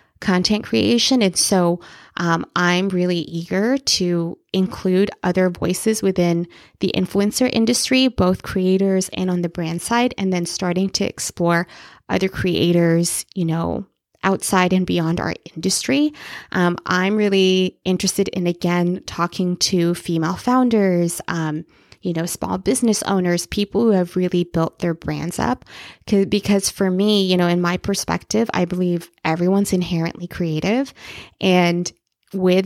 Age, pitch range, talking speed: 20-39, 175-195 Hz, 140 wpm